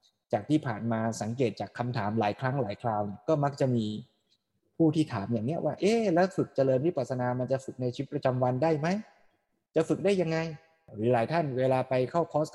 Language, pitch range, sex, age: Thai, 120-160 Hz, male, 20-39